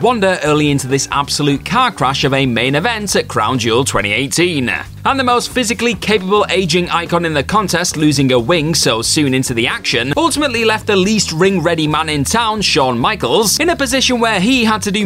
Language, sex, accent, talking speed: English, male, British, 205 wpm